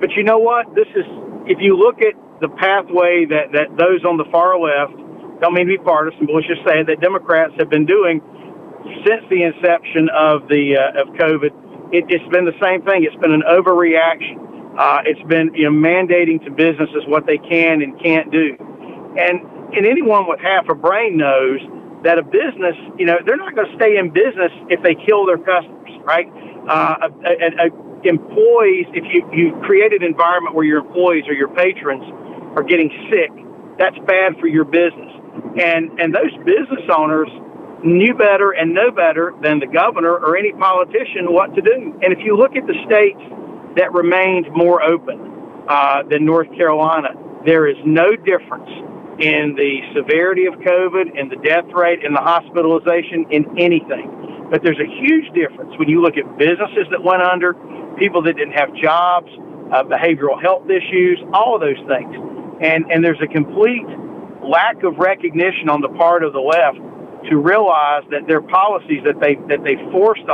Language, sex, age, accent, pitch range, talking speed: English, male, 50-69, American, 155-195 Hz, 185 wpm